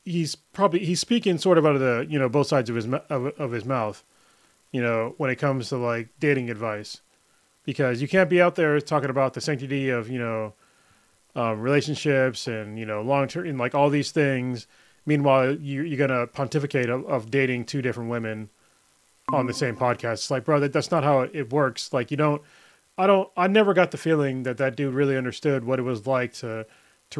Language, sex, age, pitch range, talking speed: English, male, 20-39, 120-150 Hz, 215 wpm